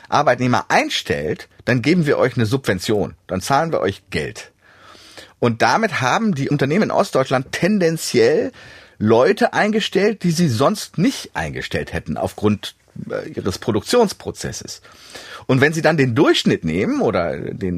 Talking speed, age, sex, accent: 140 wpm, 40-59, male, German